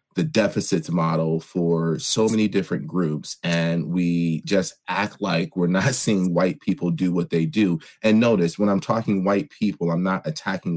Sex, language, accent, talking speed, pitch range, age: male, English, American, 180 wpm, 85-105 Hz, 30-49